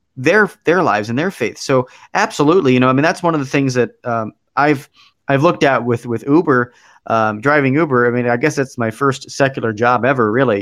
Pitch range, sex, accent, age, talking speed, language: 110-145 Hz, male, American, 30-49, 225 wpm, English